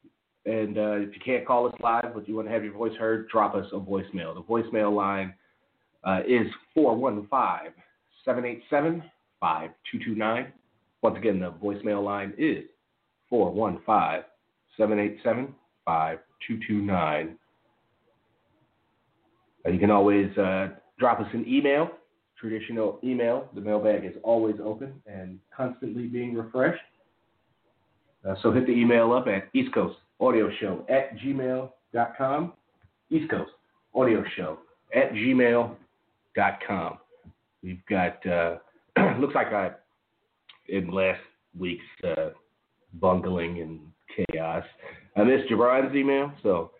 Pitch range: 95-120 Hz